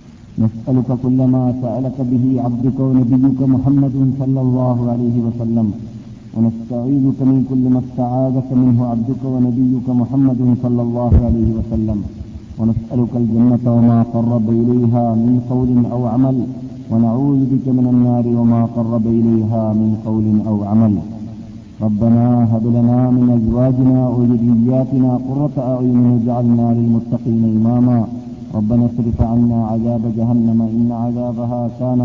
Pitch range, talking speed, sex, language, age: 115-125 Hz, 120 wpm, male, Malayalam, 50-69